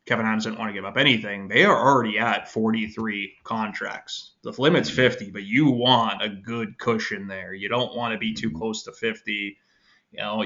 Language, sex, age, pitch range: English, male, 20-39, 110-115 Hz